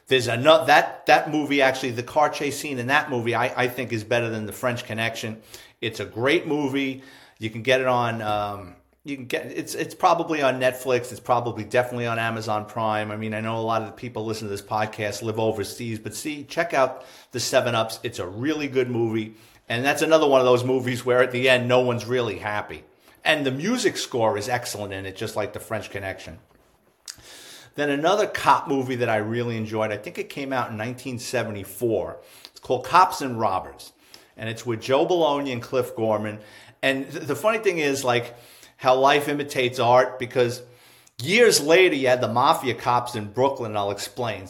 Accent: American